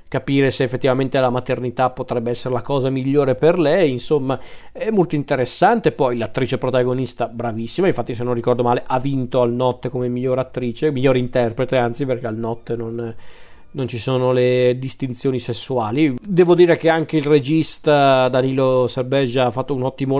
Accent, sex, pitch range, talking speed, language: native, male, 125-155 Hz, 170 wpm, Italian